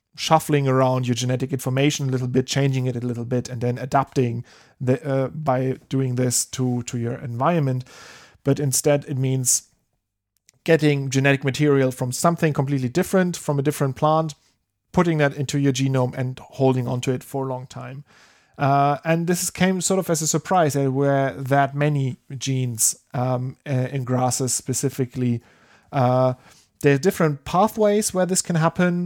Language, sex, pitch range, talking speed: English, male, 130-150 Hz, 165 wpm